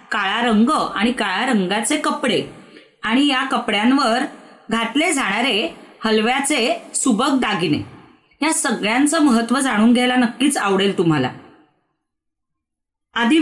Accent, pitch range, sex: native, 215-280 Hz, female